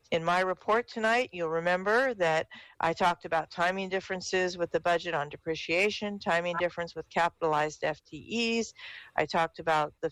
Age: 50-69